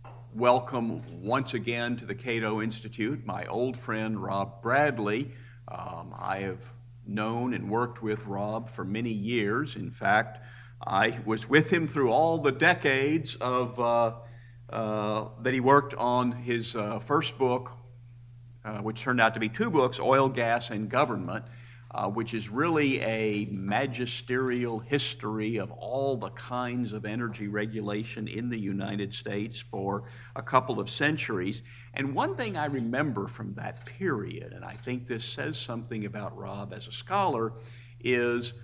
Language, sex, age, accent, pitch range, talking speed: English, male, 50-69, American, 110-125 Hz, 155 wpm